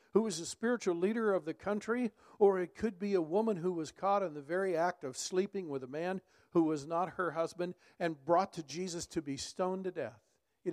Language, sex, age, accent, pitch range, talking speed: English, male, 50-69, American, 135-185 Hz, 230 wpm